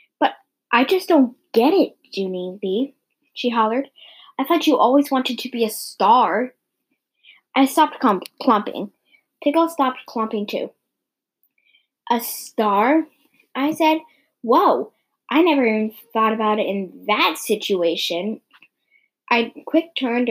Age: 10-29